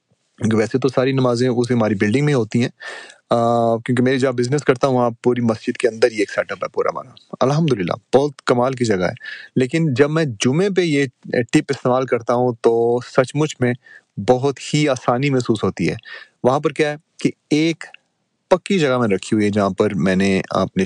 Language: Urdu